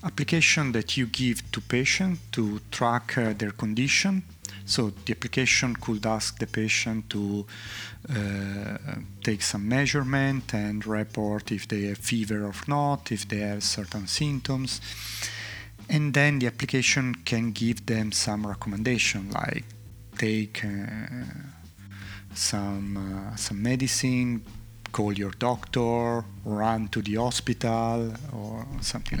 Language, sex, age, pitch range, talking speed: Italian, male, 40-59, 105-125 Hz, 125 wpm